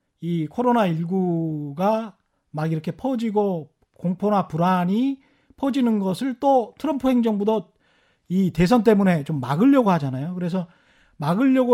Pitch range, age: 170-245 Hz, 40-59